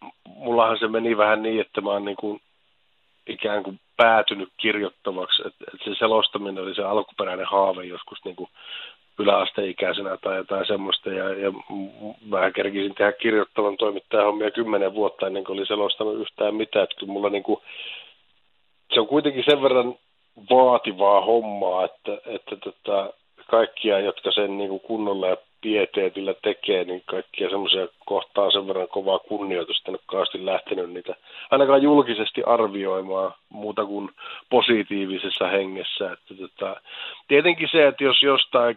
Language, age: Finnish, 50-69